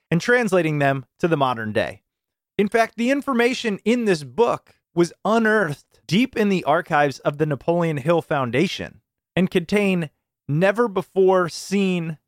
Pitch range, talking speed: 135-200 Hz, 135 wpm